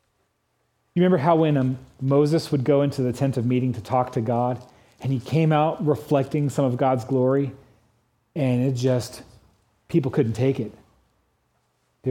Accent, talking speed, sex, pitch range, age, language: American, 165 wpm, male, 110-145 Hz, 40-59, English